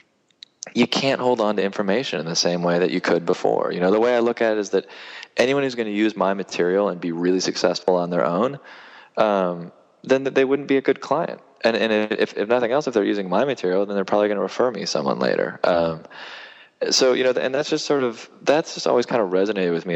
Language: English